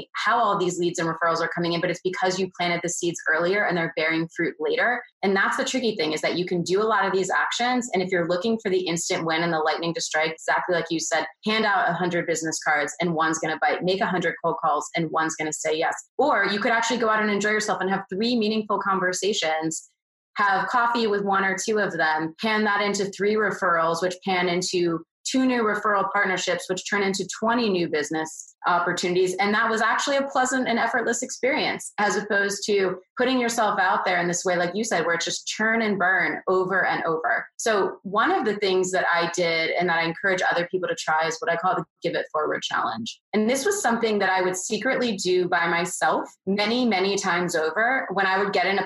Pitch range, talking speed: 170-215 Hz, 240 wpm